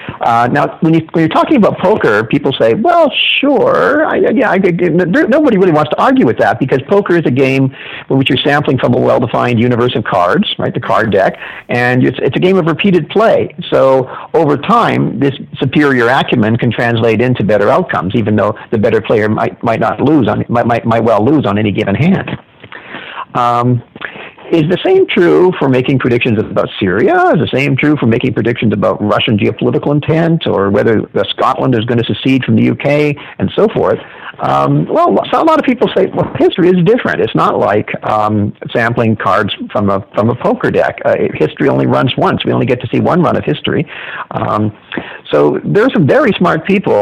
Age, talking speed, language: 50-69, 205 wpm, English